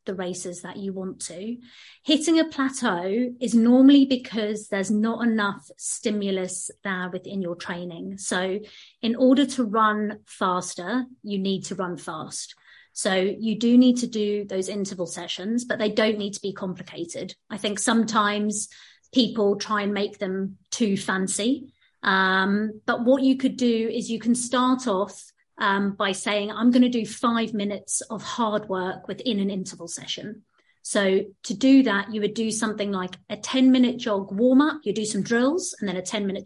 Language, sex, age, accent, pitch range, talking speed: English, female, 30-49, British, 195-245 Hz, 175 wpm